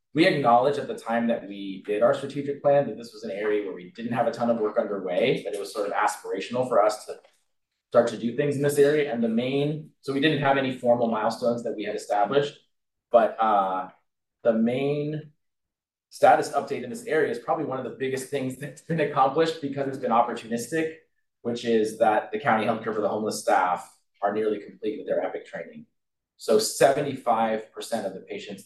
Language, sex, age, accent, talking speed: English, male, 30-49, American, 210 wpm